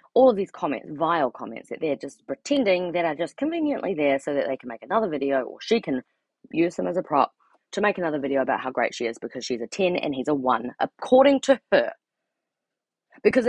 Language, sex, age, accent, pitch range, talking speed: English, female, 20-39, Australian, 145-210 Hz, 225 wpm